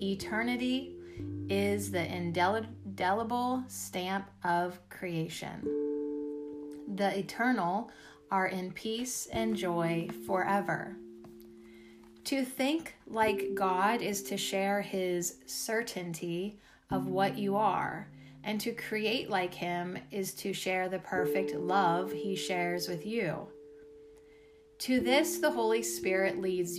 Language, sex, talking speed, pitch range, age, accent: English, female, 110 wpm, 130-205 Hz, 30-49, American